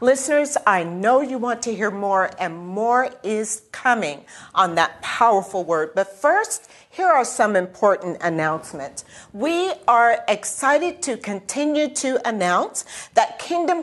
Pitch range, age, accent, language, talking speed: 185-270 Hz, 50-69, American, English, 140 wpm